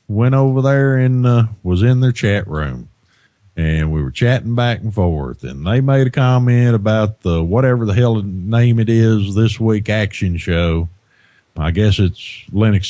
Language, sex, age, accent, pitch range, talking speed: English, male, 50-69, American, 90-120 Hz, 175 wpm